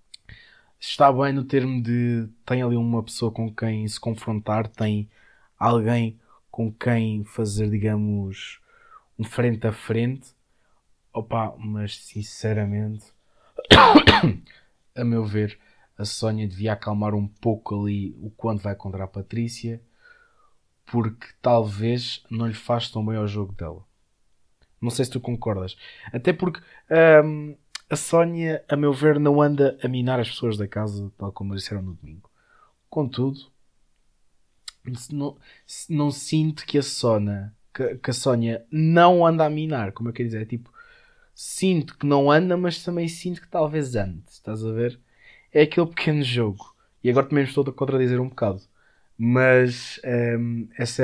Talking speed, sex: 145 wpm, male